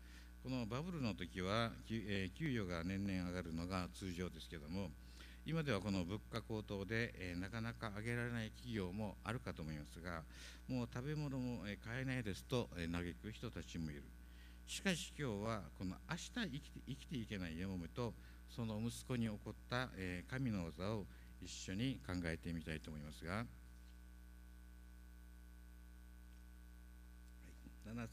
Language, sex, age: Japanese, male, 60-79